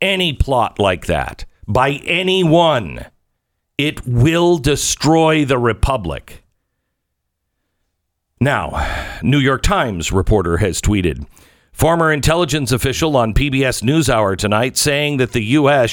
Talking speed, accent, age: 110 wpm, American, 50-69